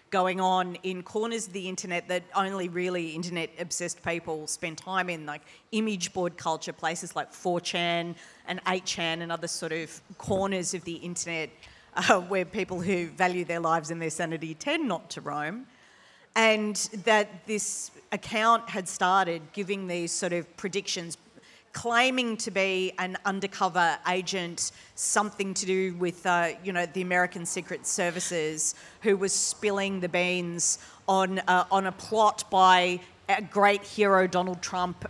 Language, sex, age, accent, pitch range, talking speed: English, female, 40-59, Australian, 175-195 Hz, 155 wpm